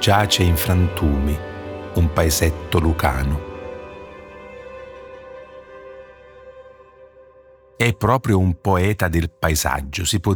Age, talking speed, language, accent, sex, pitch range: 50-69, 80 wpm, Italian, native, male, 80-100 Hz